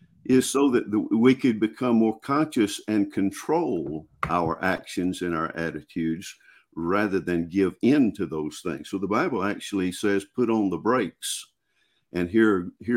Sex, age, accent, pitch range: male, 50-69, American, 90-125 Hz